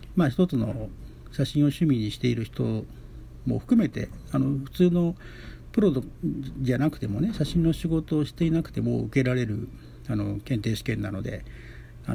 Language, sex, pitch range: Japanese, male, 110-150 Hz